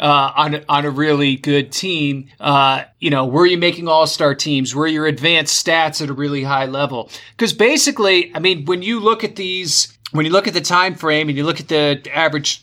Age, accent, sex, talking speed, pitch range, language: 30-49, American, male, 220 wpm, 145-185 Hz, English